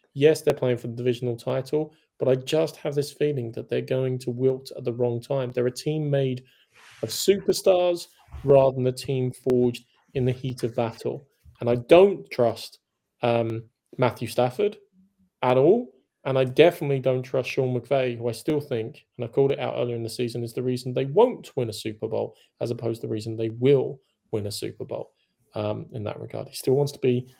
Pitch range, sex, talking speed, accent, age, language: 115-145 Hz, male, 210 wpm, British, 20-39, English